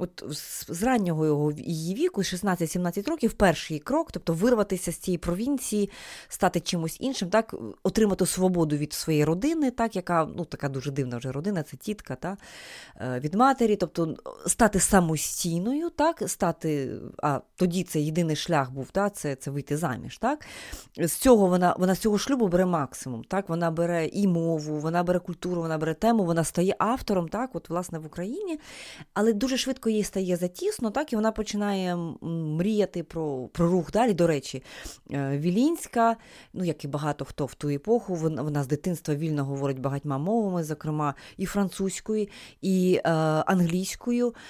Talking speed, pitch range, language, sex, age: 165 wpm, 160-205 Hz, Ukrainian, female, 20-39